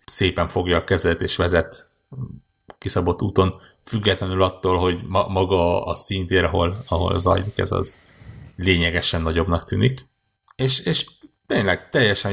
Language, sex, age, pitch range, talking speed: Hungarian, male, 60-79, 90-105 Hz, 130 wpm